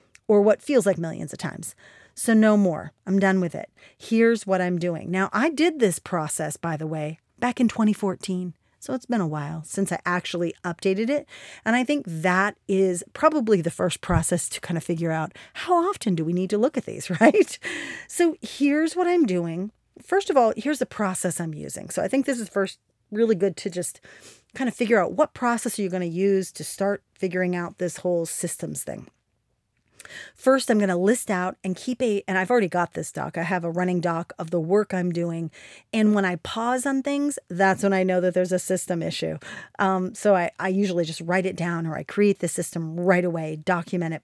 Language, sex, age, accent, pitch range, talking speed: English, female, 40-59, American, 175-225 Hz, 220 wpm